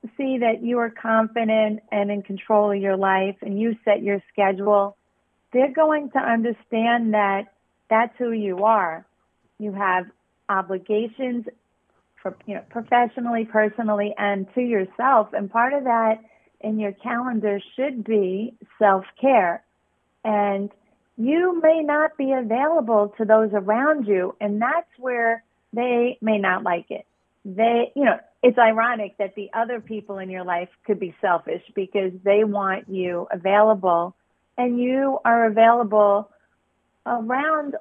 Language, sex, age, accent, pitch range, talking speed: English, female, 40-59, American, 200-240 Hz, 140 wpm